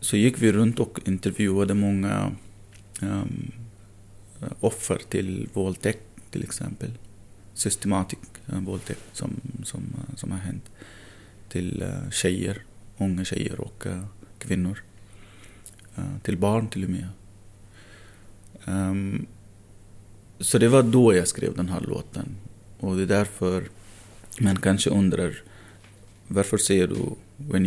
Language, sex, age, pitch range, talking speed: Swedish, male, 30-49, 95-110 Hz, 120 wpm